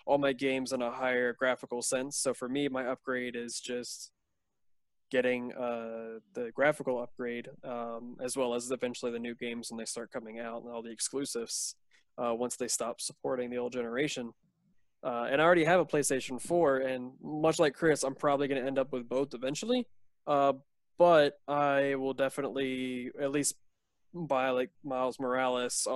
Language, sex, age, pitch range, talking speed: English, male, 20-39, 120-145 Hz, 180 wpm